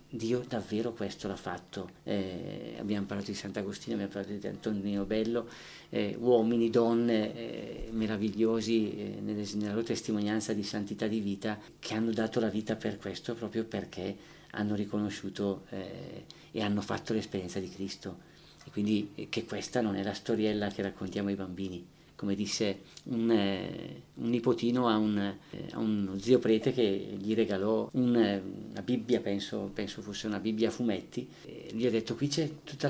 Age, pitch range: 40-59, 100-120 Hz